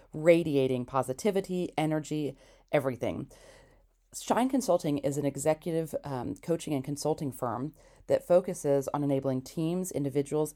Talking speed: 115 wpm